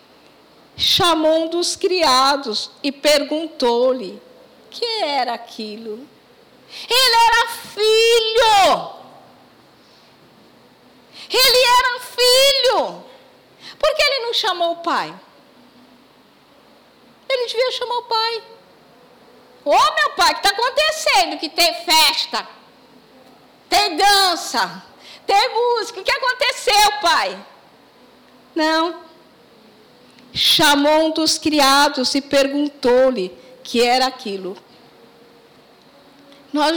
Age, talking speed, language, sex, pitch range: 50-69, 100 wpm, Portuguese, female, 255-370 Hz